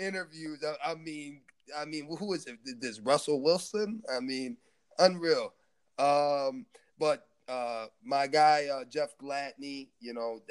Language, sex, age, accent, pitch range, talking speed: English, male, 20-39, American, 115-160 Hz, 135 wpm